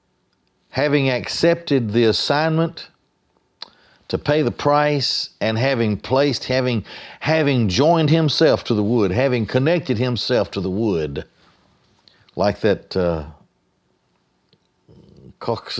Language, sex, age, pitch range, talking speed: English, male, 60-79, 95-140 Hz, 105 wpm